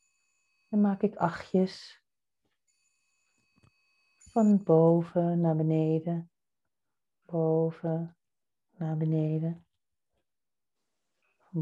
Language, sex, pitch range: Dutch, female, 160-175 Hz